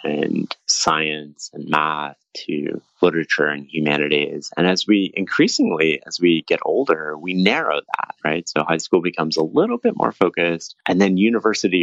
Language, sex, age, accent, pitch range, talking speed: English, male, 30-49, American, 80-95 Hz, 160 wpm